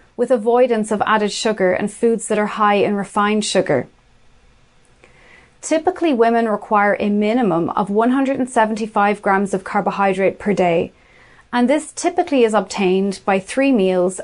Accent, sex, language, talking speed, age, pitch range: Irish, female, English, 140 wpm, 30-49, 195-240 Hz